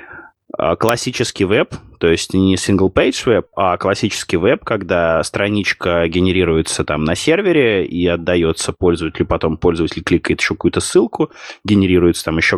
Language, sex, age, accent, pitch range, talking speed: Russian, male, 20-39, native, 85-105 Hz, 135 wpm